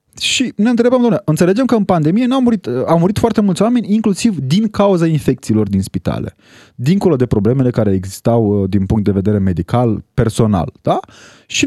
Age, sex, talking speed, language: 20-39, male, 180 wpm, Romanian